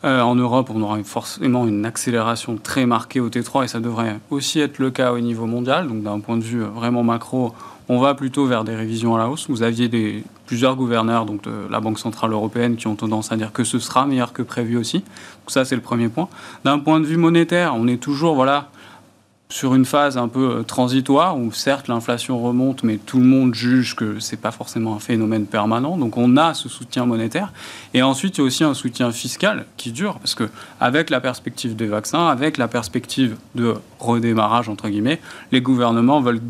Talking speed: 215 wpm